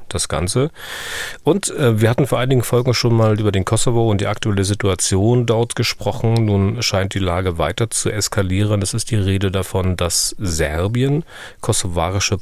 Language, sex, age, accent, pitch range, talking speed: German, male, 40-59, German, 95-115 Hz, 170 wpm